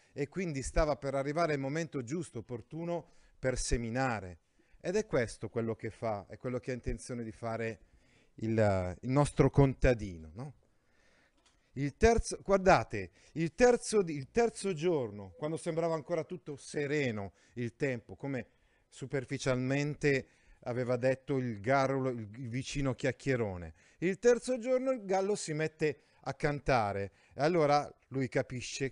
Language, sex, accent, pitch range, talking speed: Italian, male, native, 115-165 Hz, 135 wpm